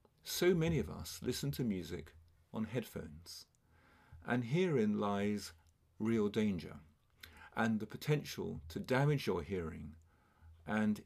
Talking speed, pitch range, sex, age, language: 120 wpm, 85-120 Hz, male, 40-59, English